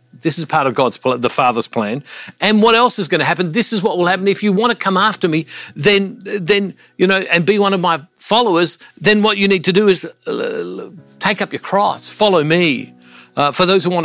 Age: 50-69